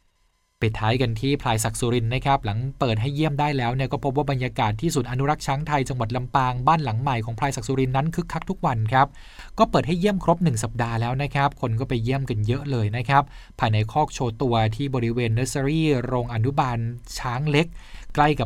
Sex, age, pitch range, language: male, 20-39, 115-140 Hz, Thai